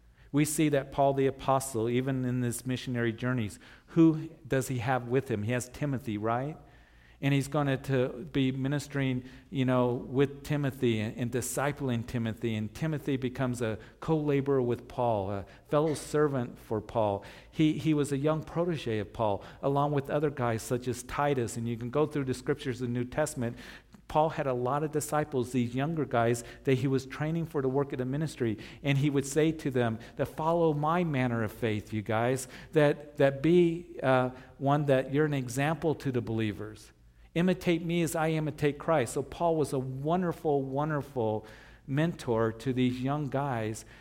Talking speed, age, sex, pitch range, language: 185 wpm, 50-69, male, 120-150 Hz, English